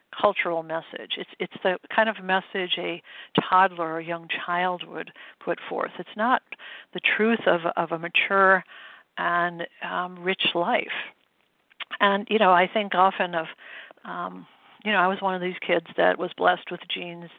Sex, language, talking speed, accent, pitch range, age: female, English, 170 wpm, American, 175-210 Hz, 60-79